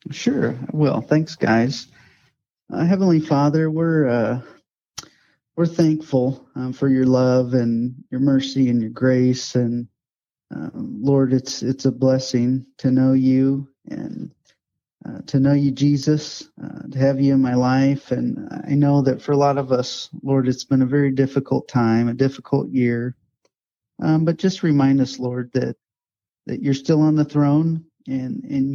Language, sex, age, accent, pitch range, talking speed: English, male, 30-49, American, 125-150 Hz, 165 wpm